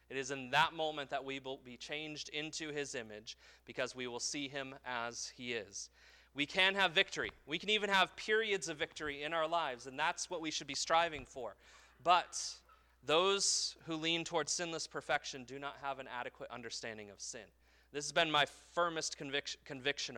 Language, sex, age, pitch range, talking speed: English, male, 30-49, 115-160 Hz, 190 wpm